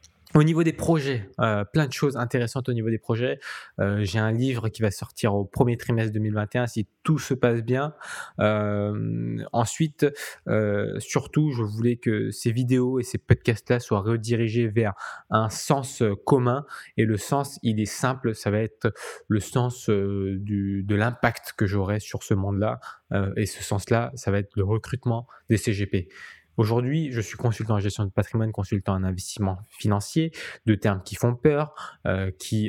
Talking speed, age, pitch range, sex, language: 175 wpm, 20-39, 100-120 Hz, male, French